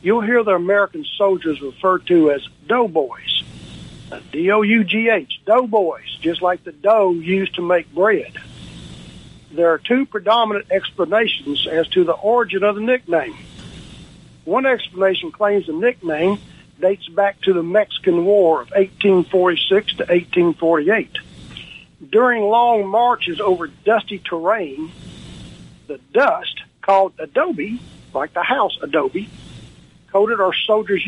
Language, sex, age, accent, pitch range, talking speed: English, male, 60-79, American, 165-210 Hz, 120 wpm